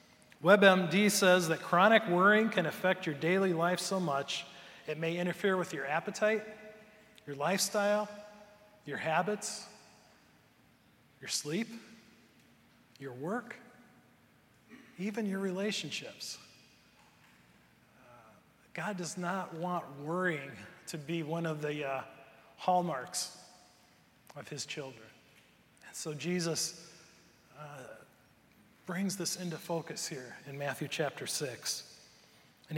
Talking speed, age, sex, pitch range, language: 110 wpm, 40-59, male, 155-195 Hz, English